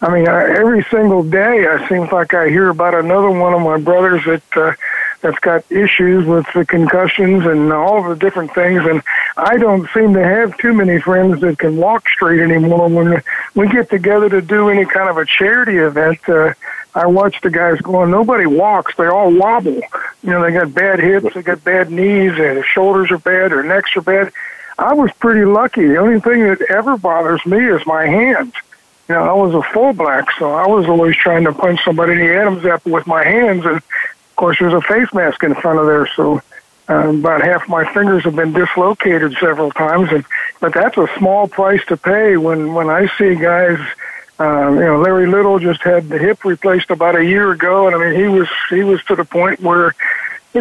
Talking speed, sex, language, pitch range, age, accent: 215 wpm, male, English, 170-200 Hz, 60-79, American